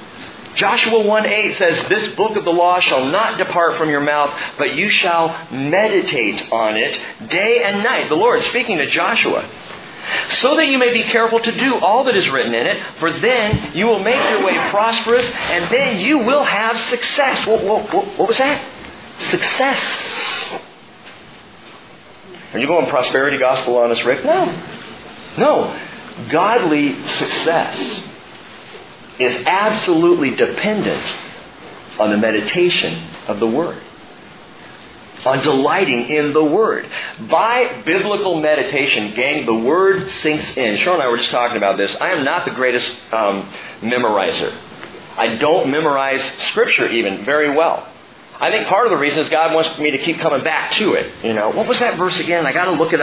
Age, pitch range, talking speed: 40-59, 145-240 Hz, 165 wpm